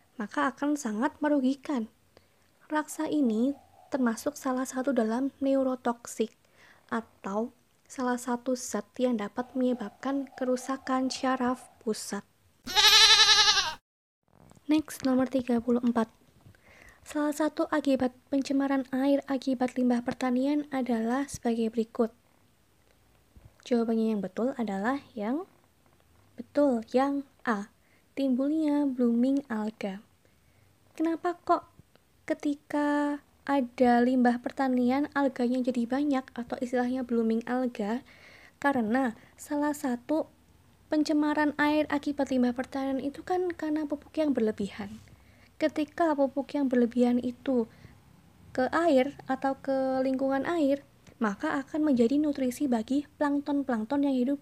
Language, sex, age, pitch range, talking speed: Indonesian, female, 20-39, 245-290 Hz, 100 wpm